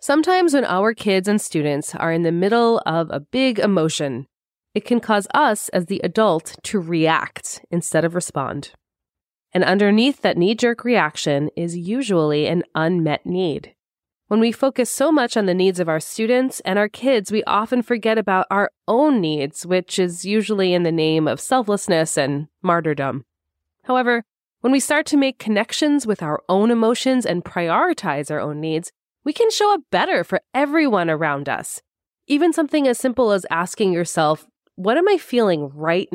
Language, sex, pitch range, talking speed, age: English, female, 165-245 Hz, 175 wpm, 20-39